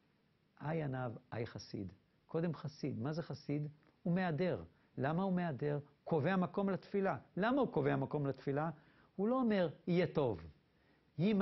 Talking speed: 145 wpm